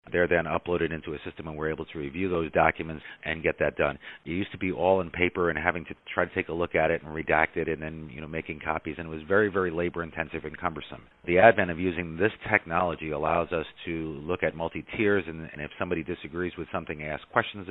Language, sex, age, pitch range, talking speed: English, male, 40-59, 80-90 Hz, 245 wpm